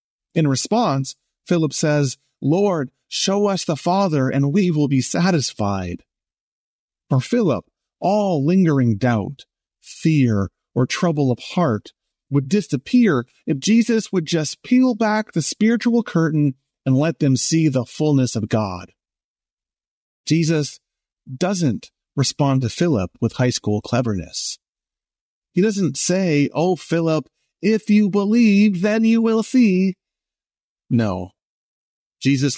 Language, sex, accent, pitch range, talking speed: English, male, American, 120-160 Hz, 120 wpm